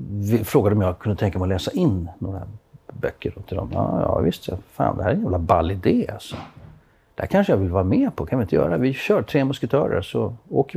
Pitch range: 95-120 Hz